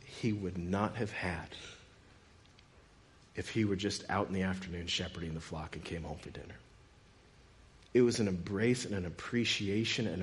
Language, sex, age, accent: English, male, 50-69, American